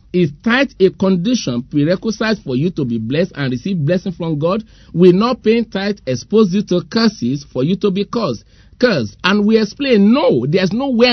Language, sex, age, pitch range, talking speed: English, male, 50-69, 165-220 Hz, 190 wpm